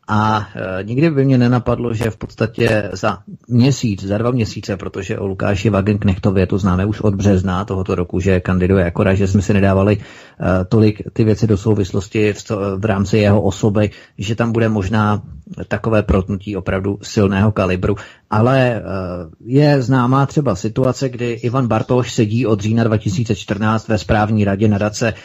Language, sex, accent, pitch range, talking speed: Czech, male, native, 105-125 Hz, 160 wpm